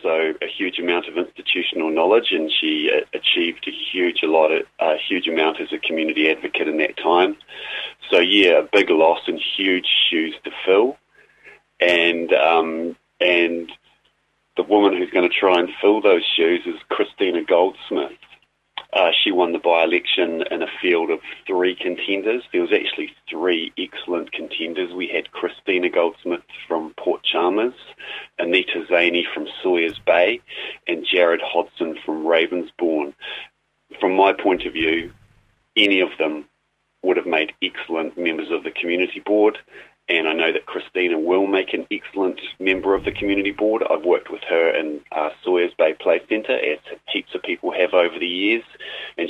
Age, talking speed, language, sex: 30-49, 165 wpm, English, male